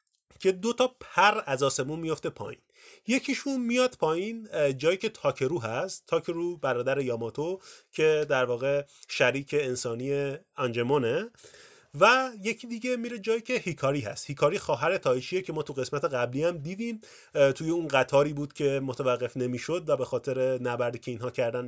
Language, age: Persian, 30-49